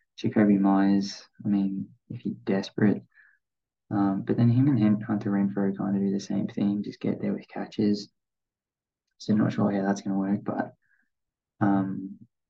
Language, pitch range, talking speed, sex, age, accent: English, 100-110 Hz, 175 wpm, male, 20-39, Australian